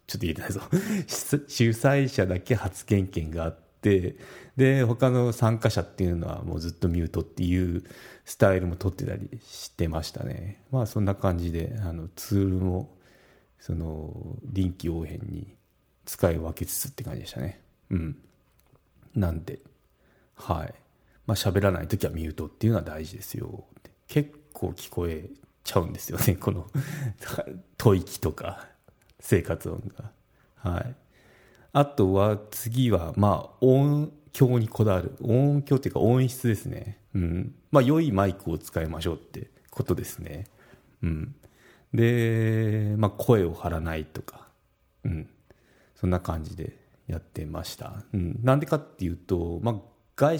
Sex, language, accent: male, Japanese, native